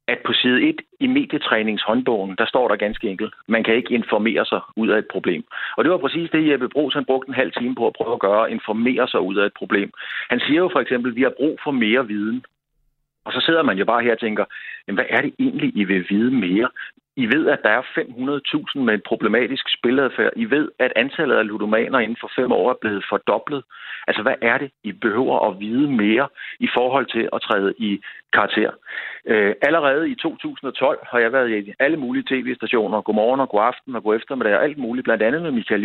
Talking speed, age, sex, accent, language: 225 wpm, 50-69, male, native, Danish